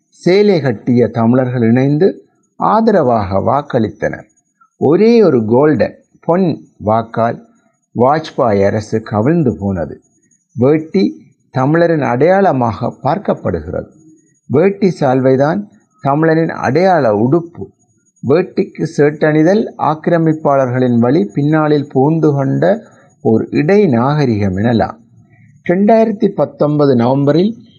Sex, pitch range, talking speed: male, 115-160 Hz, 80 wpm